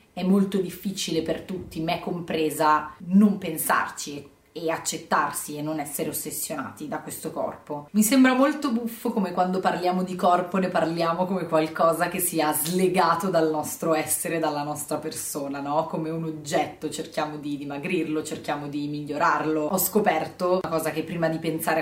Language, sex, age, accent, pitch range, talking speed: English, female, 30-49, Italian, 155-190 Hz, 160 wpm